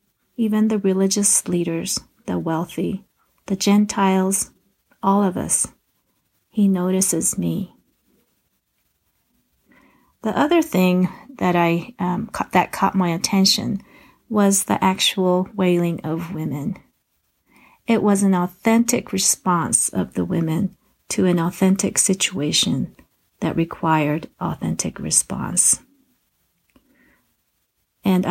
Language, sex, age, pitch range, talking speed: English, female, 40-59, 180-215 Hz, 100 wpm